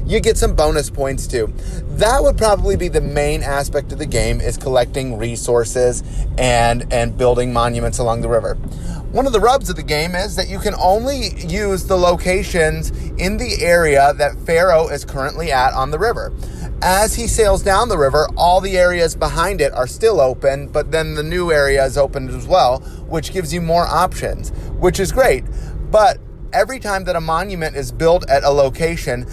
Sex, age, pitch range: male, 30-49, 130-180 Hz